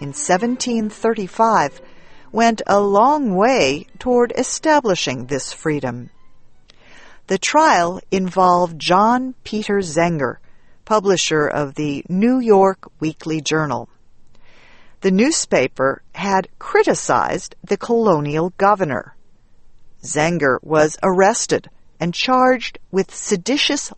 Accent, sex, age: American, female, 50-69